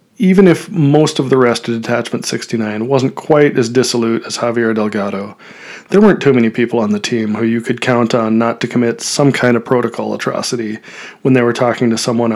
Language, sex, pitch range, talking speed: English, male, 115-150 Hz, 210 wpm